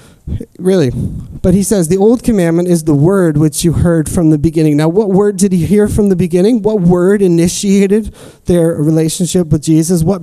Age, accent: 30-49, American